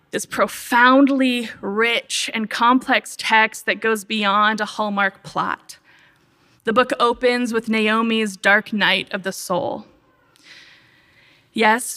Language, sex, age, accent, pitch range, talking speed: English, female, 20-39, American, 205-235 Hz, 115 wpm